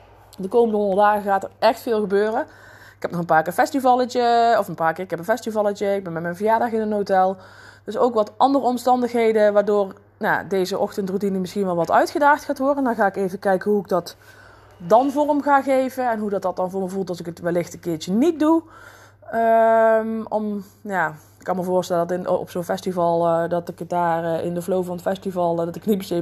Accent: Dutch